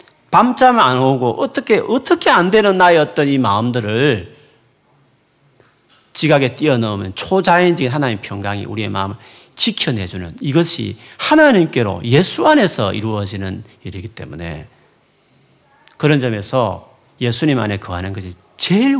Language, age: Korean, 40-59